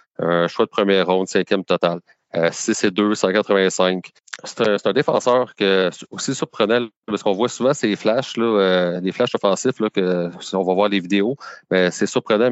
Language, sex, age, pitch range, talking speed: French, male, 40-59, 90-105 Hz, 205 wpm